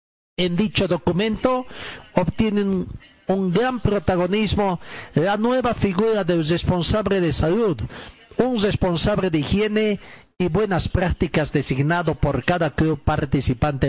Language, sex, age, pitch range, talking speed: Spanish, male, 50-69, 155-205 Hz, 110 wpm